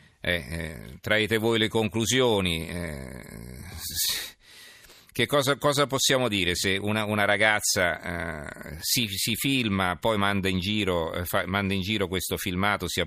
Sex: male